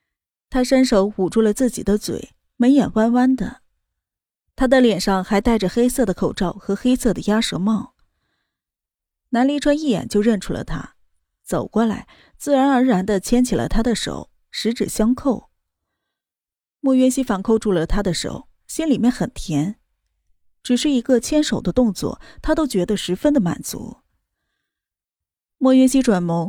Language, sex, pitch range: Chinese, female, 200-260 Hz